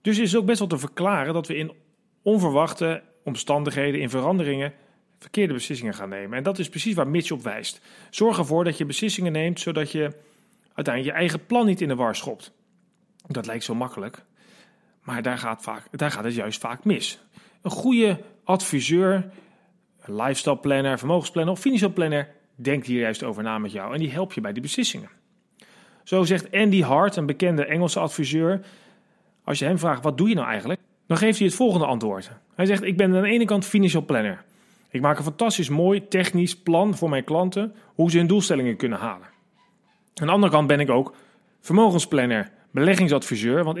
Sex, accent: male, Dutch